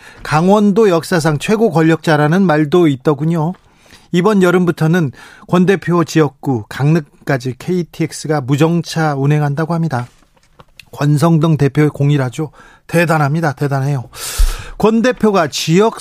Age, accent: 40-59, native